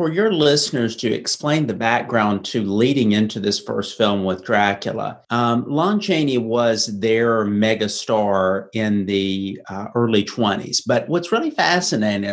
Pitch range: 105-145 Hz